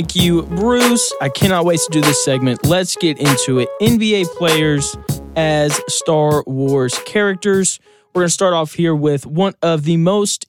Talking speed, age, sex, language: 175 wpm, 20-39, male, English